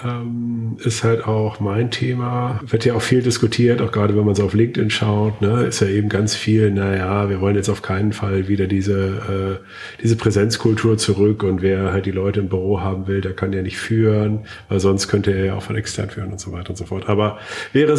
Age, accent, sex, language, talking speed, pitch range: 40-59, German, male, German, 230 wpm, 95-110 Hz